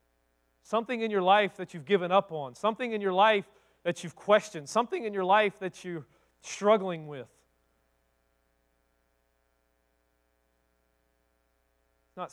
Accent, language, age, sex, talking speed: American, English, 40-59, male, 120 wpm